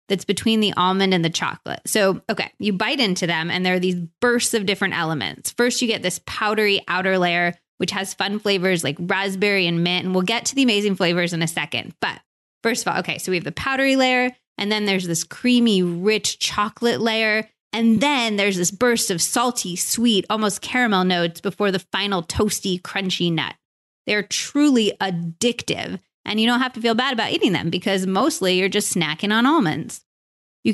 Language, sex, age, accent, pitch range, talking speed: English, female, 20-39, American, 180-230 Hz, 200 wpm